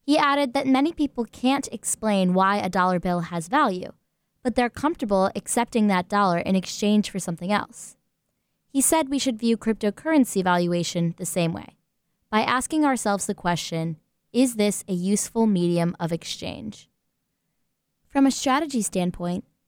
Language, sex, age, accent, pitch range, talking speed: English, female, 20-39, American, 185-240 Hz, 150 wpm